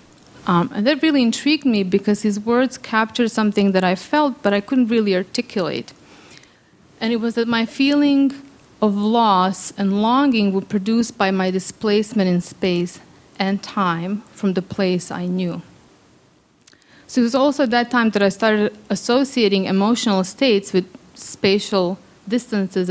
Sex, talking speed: female, 155 wpm